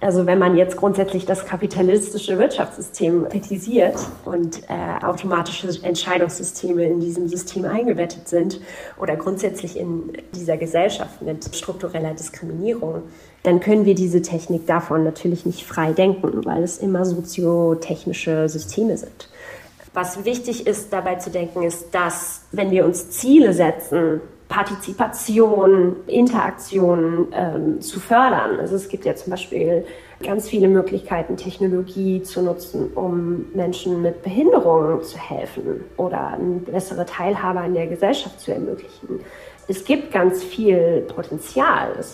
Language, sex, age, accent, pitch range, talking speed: German, female, 30-49, German, 170-195 Hz, 130 wpm